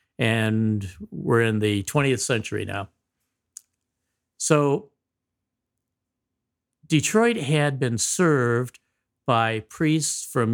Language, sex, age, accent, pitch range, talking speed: English, male, 50-69, American, 110-140 Hz, 85 wpm